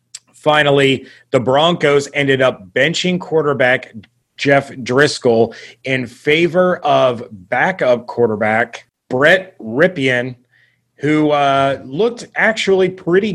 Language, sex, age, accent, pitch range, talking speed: English, male, 30-49, American, 125-150 Hz, 95 wpm